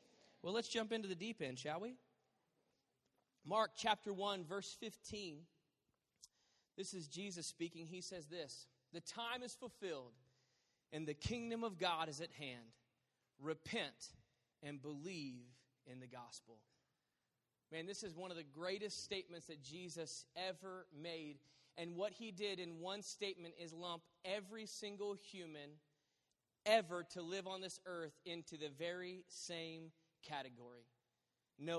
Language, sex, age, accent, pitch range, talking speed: English, male, 30-49, American, 160-255 Hz, 140 wpm